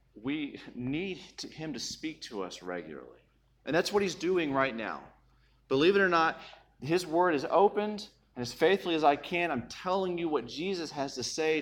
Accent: American